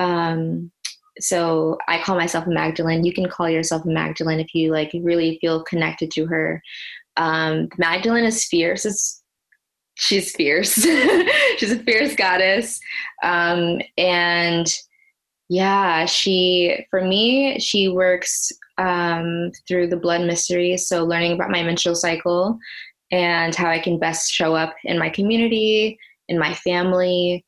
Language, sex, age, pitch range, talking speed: English, female, 20-39, 165-185 Hz, 140 wpm